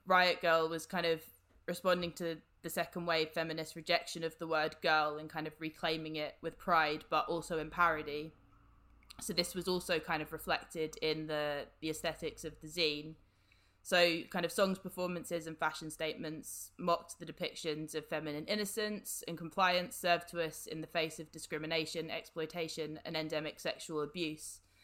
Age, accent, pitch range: 20-39, British, 155-175 Hz